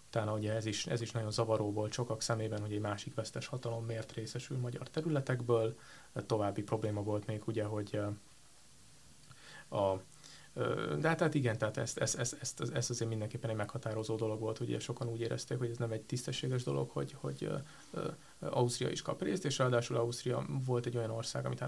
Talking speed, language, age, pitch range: 190 wpm, Hungarian, 30-49, 110-130 Hz